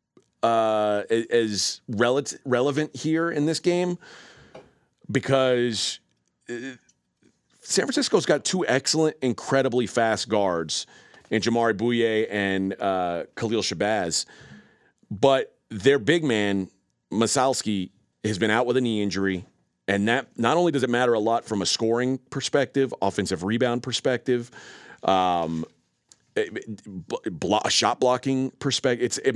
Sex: male